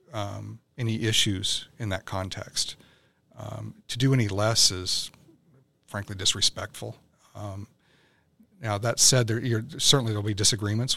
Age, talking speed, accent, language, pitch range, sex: 40-59, 130 wpm, American, English, 95-115 Hz, male